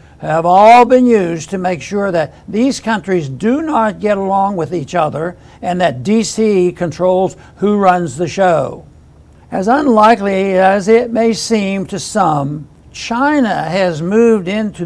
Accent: American